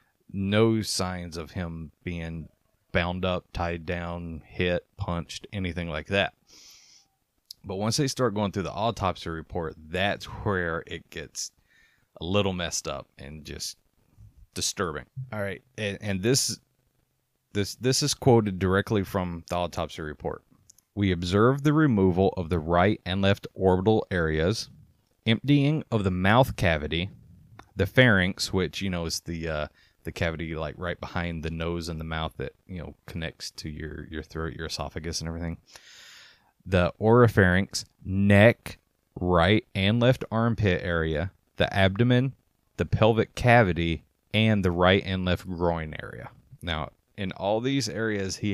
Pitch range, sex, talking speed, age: 85-105 Hz, male, 150 wpm, 30-49